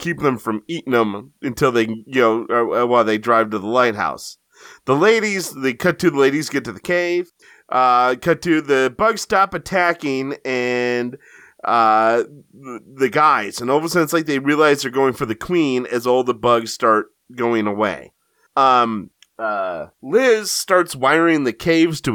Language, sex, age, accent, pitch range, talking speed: English, male, 30-49, American, 120-165 Hz, 180 wpm